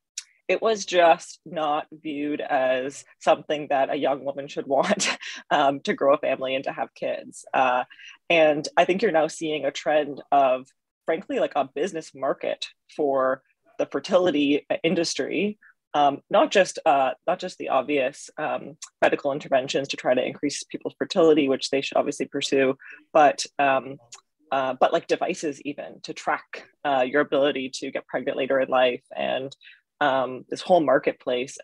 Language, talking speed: English, 155 wpm